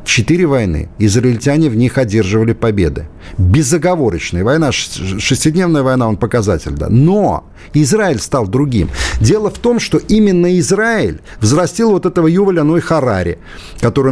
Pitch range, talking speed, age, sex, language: 110-175 Hz, 130 wpm, 50-69, male, Russian